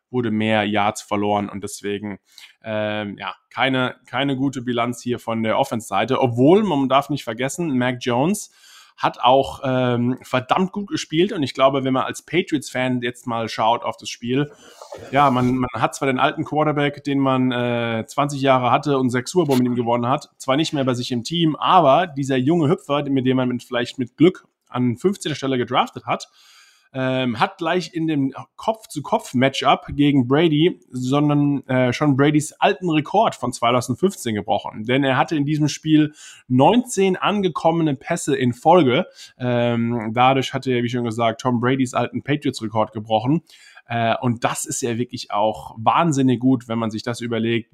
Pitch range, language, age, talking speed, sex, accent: 120-145 Hz, German, 20-39, 180 wpm, male, German